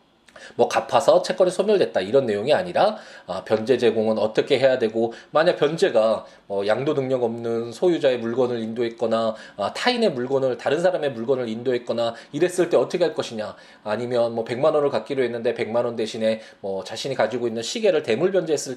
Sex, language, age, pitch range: male, Korean, 20-39, 110-185 Hz